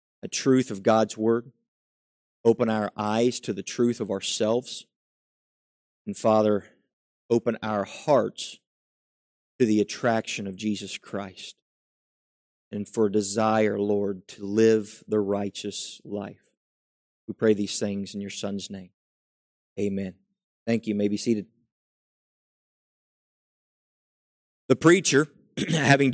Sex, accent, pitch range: male, American, 110-140 Hz